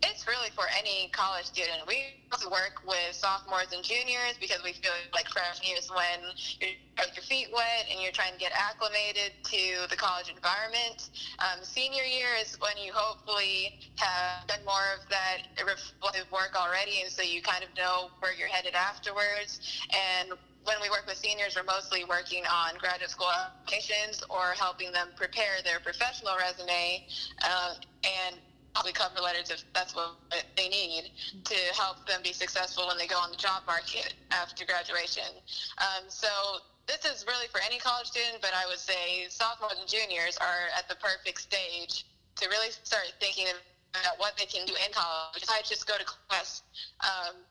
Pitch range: 180-210 Hz